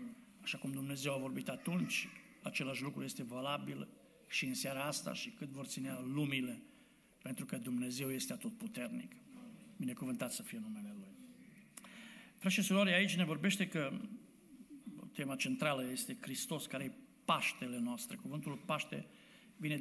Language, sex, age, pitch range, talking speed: Romanian, male, 60-79, 140-230 Hz, 140 wpm